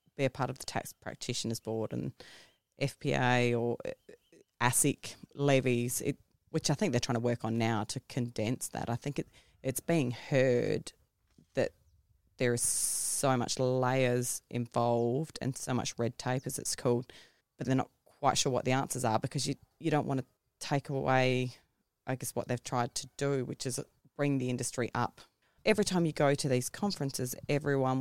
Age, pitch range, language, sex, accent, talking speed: 20-39, 125-145 Hz, English, female, Australian, 180 wpm